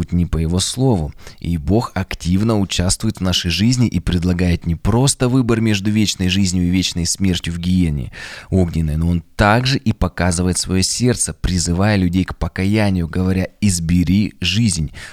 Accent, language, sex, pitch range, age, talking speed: native, Russian, male, 85-110 Hz, 20-39, 155 wpm